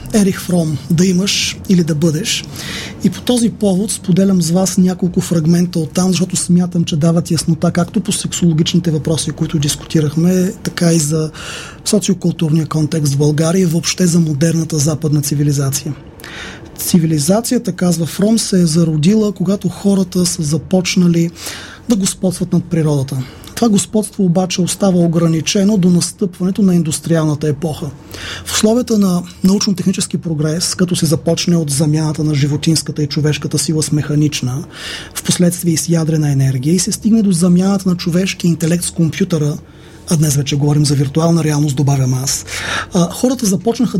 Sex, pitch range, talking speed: male, 155-185 Hz, 150 wpm